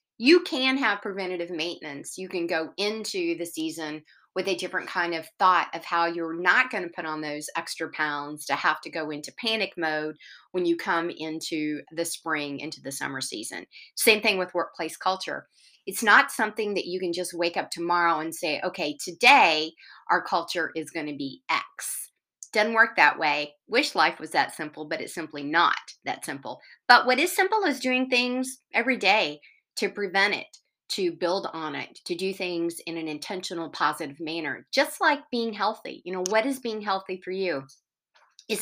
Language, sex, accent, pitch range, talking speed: English, female, American, 160-215 Hz, 190 wpm